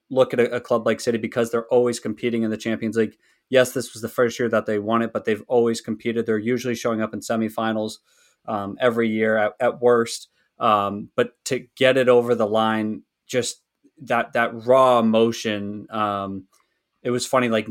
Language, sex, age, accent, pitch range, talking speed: English, male, 20-39, American, 110-125 Hz, 200 wpm